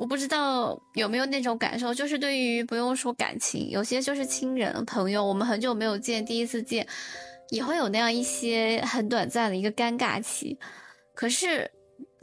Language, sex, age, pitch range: Chinese, female, 10-29, 215-260 Hz